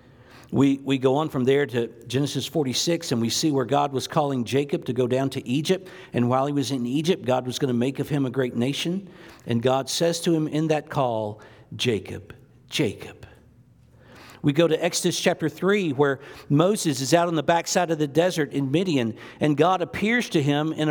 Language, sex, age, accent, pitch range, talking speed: English, male, 50-69, American, 125-165 Hz, 205 wpm